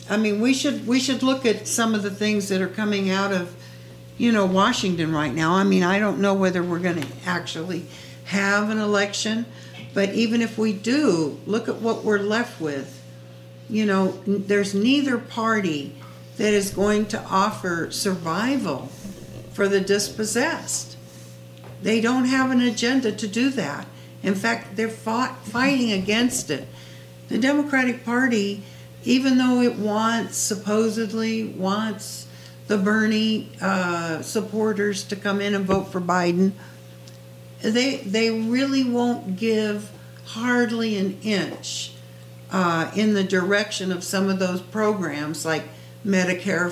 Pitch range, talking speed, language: 160-225 Hz, 145 wpm, English